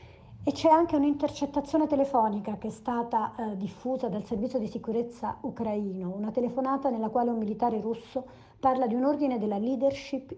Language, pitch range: Italian, 205-255 Hz